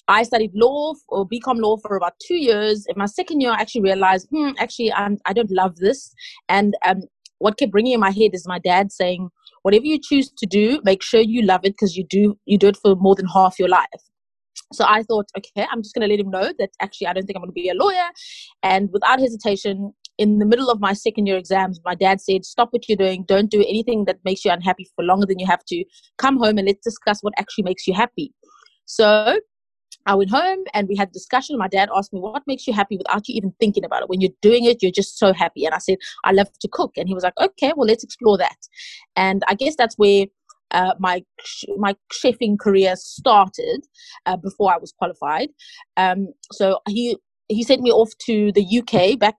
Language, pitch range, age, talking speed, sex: English, 195-240 Hz, 20-39, 240 wpm, female